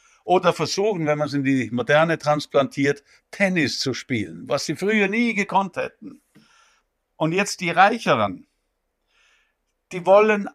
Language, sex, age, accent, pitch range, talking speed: German, male, 60-79, German, 145-205 Hz, 135 wpm